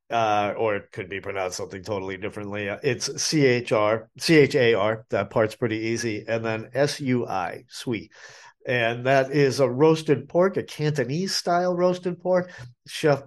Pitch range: 110-140 Hz